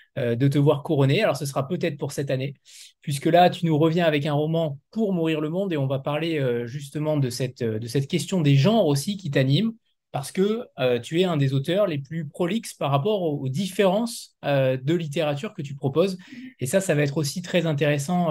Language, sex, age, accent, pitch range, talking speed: French, male, 20-39, French, 140-180 Hz, 230 wpm